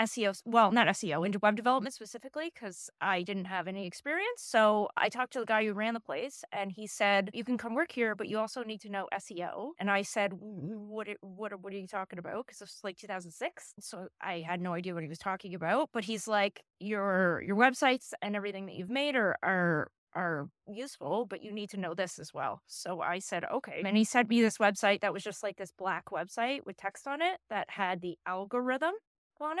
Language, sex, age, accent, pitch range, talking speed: English, female, 20-39, American, 195-240 Hz, 225 wpm